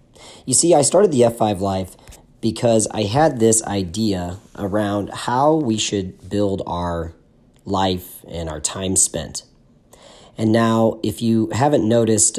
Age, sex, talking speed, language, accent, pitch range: 40-59, male, 140 wpm, English, American, 95-115 Hz